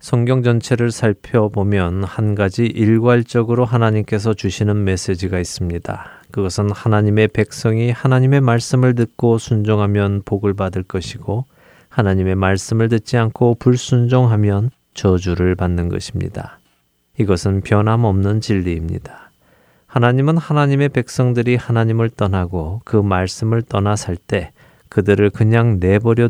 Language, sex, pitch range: Korean, male, 95-120 Hz